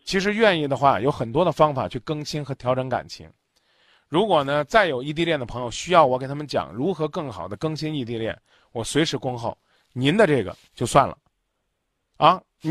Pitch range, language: 130-170 Hz, Chinese